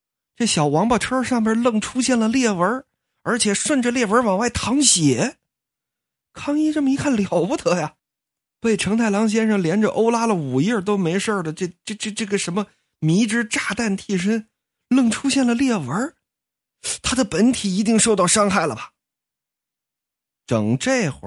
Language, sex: Chinese, male